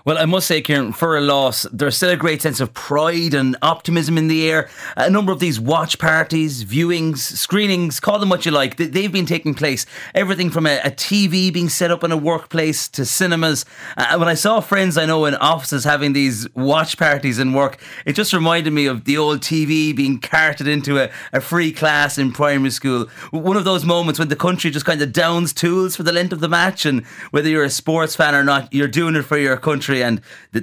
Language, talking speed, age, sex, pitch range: English, 230 wpm, 30-49, male, 140-170 Hz